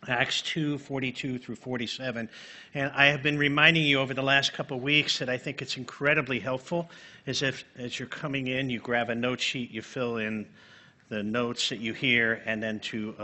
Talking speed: 200 wpm